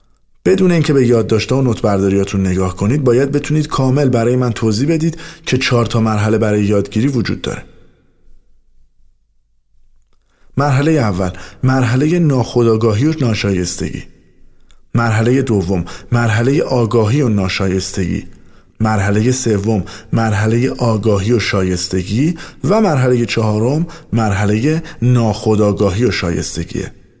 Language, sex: Persian, male